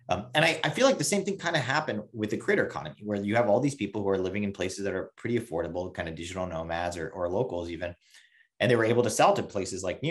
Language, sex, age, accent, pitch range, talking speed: English, male, 30-49, American, 95-120 Hz, 290 wpm